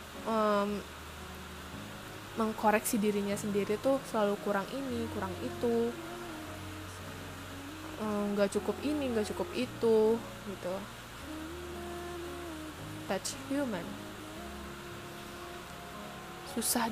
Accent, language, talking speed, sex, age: native, Indonesian, 75 wpm, female, 20-39